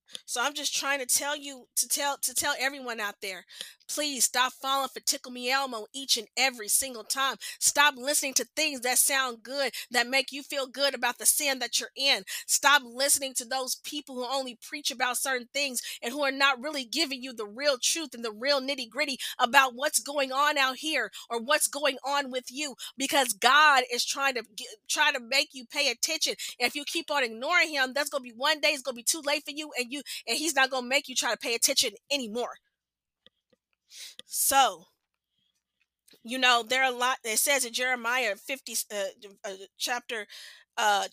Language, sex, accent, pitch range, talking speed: English, female, American, 230-280 Hz, 205 wpm